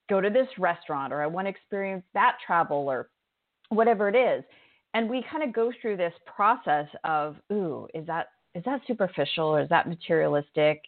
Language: English